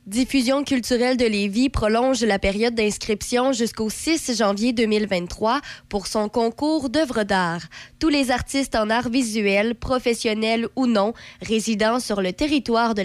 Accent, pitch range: Canadian, 200-245 Hz